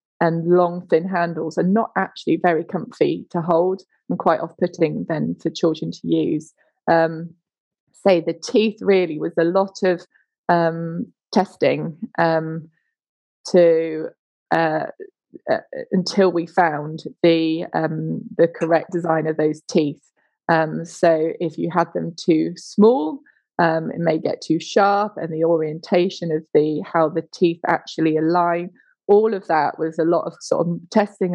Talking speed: 150 wpm